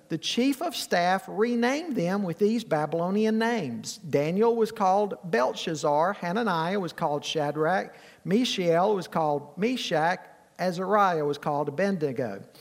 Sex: male